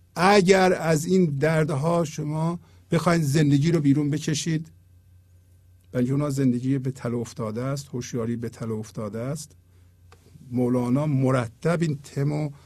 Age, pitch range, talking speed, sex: 50-69, 110-180 Hz, 125 wpm, male